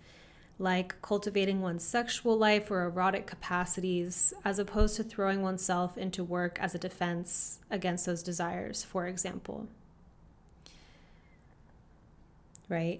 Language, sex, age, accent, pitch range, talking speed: English, female, 20-39, American, 180-210 Hz, 110 wpm